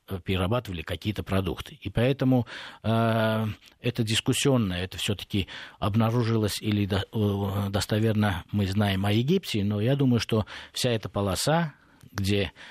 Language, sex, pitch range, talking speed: Russian, male, 95-115 Hz, 130 wpm